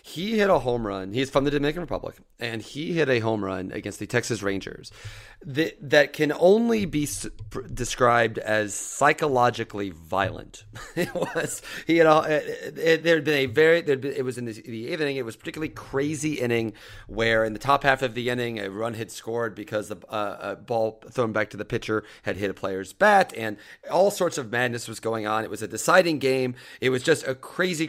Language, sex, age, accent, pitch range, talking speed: English, male, 30-49, American, 110-155 Hz, 205 wpm